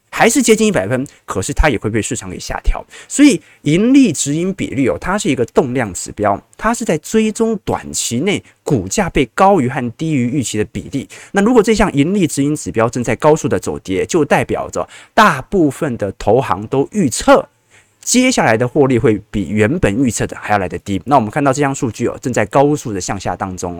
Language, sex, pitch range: Chinese, male, 105-170 Hz